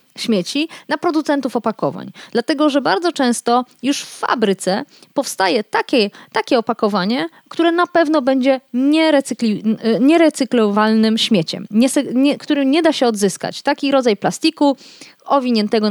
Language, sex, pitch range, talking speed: Polish, female, 210-275 Hz, 115 wpm